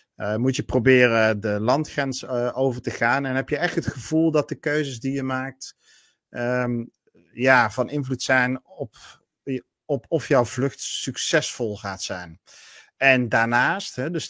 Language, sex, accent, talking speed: Dutch, male, Dutch, 165 wpm